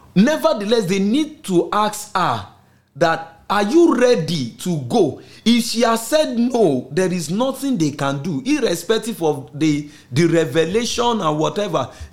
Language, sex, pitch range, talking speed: English, male, 145-225 Hz, 150 wpm